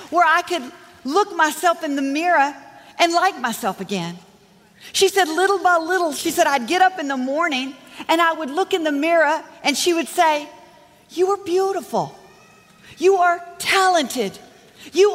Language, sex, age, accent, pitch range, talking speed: English, female, 40-59, American, 255-350 Hz, 170 wpm